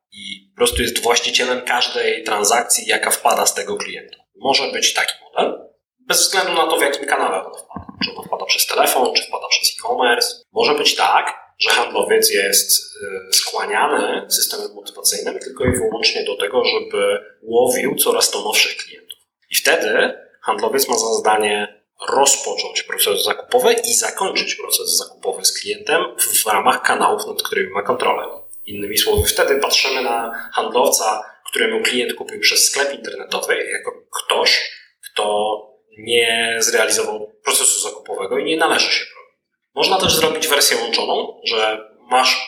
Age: 30-49